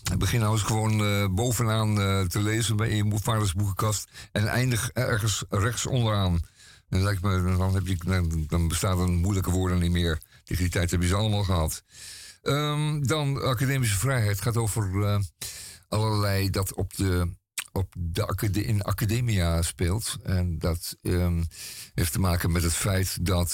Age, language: 50-69, Dutch